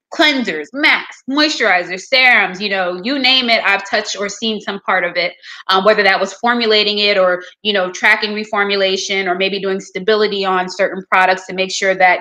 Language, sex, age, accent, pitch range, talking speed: English, female, 20-39, American, 185-220 Hz, 190 wpm